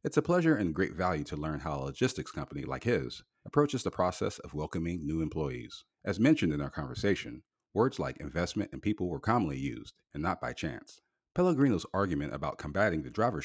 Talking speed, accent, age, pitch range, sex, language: 195 wpm, American, 40-59, 80-125 Hz, male, English